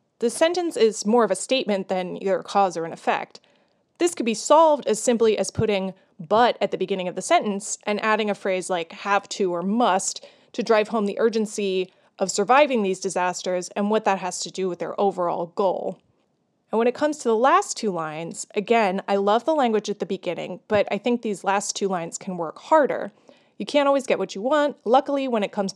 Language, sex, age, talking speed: English, female, 20-39, 220 wpm